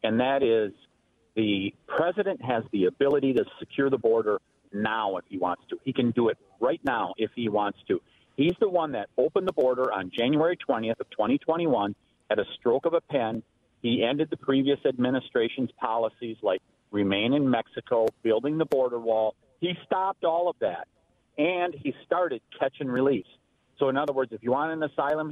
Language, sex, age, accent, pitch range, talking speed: English, male, 50-69, American, 115-160 Hz, 185 wpm